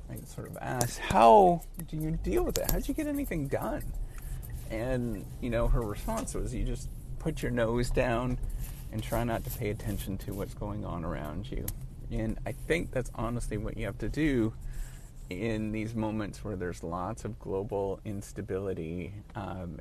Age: 30-49